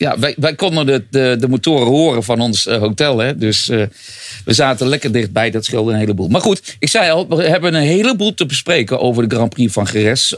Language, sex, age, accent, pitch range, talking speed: English, male, 50-69, Dutch, 120-170 Hz, 230 wpm